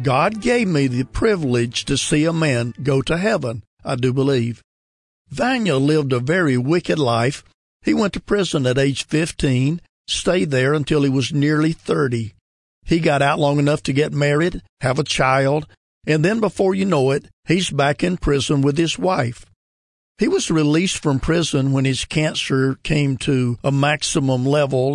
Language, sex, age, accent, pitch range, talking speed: English, male, 50-69, American, 125-155 Hz, 175 wpm